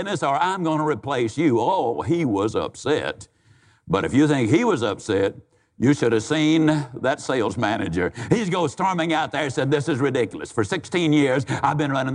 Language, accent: English, American